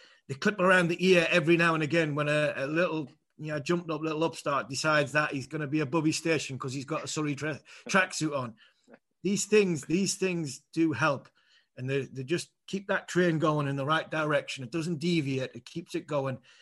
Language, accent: English, British